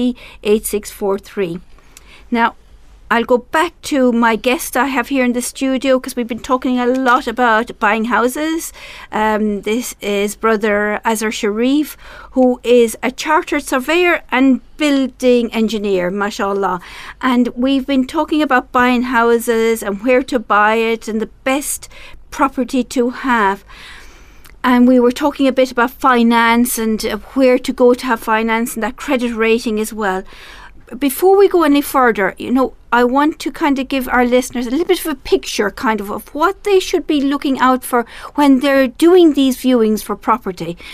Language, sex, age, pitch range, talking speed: English, female, 50-69, 220-270 Hz, 165 wpm